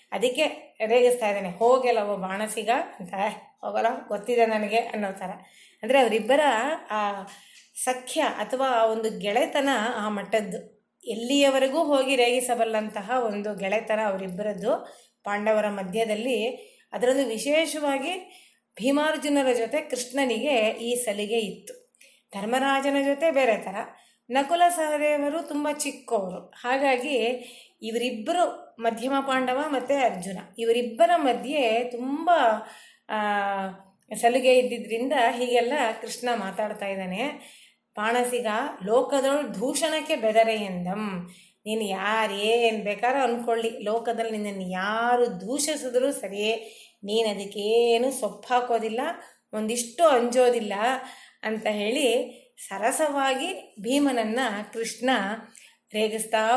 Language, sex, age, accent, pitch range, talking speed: Kannada, female, 30-49, native, 215-265 Hz, 90 wpm